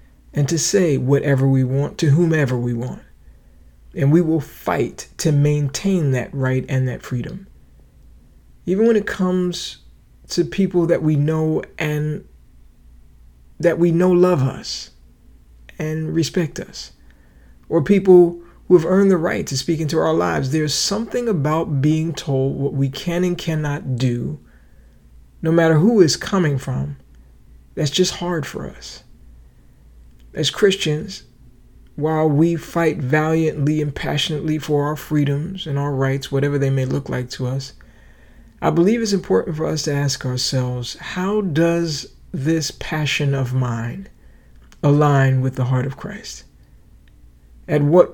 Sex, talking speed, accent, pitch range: male, 145 wpm, American, 125-165 Hz